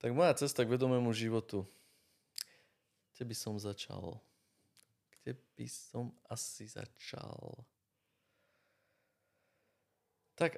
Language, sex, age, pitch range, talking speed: Slovak, male, 20-39, 100-115 Hz, 90 wpm